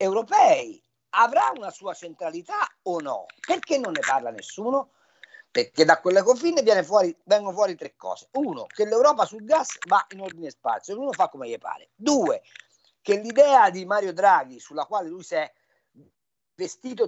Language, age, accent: Italian, 50-69, native